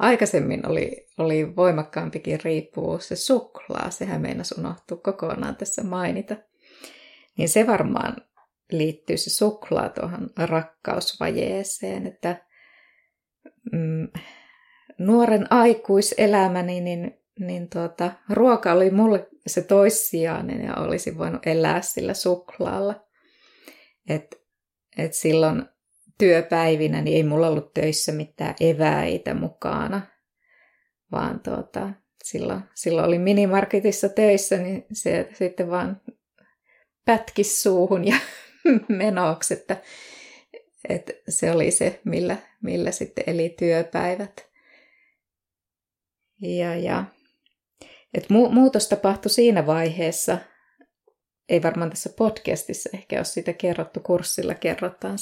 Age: 20-39